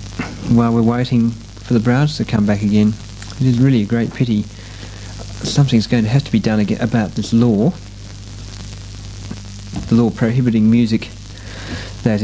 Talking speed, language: 155 wpm, English